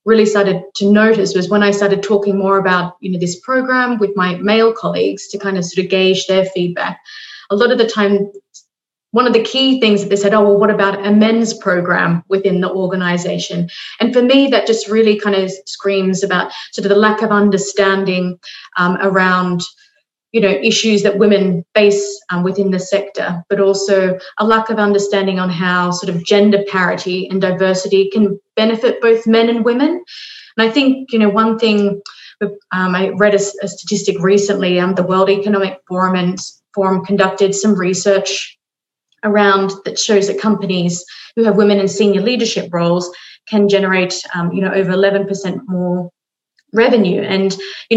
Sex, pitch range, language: female, 190-215 Hz, English